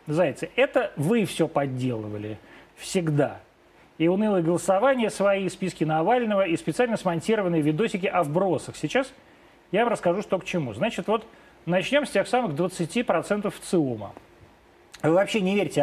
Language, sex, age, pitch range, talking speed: Russian, male, 30-49, 170-230 Hz, 140 wpm